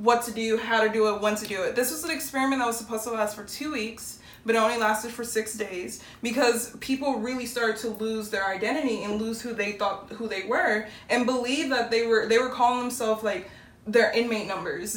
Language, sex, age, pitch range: English, female, 20-39, 210-235 Hz